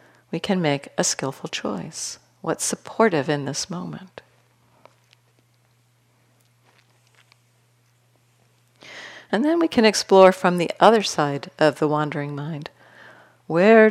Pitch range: 135-190 Hz